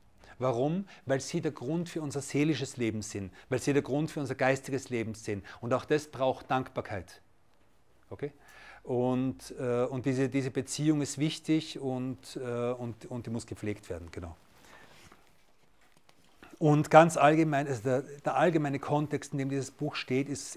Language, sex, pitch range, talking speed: German, male, 120-145 Hz, 150 wpm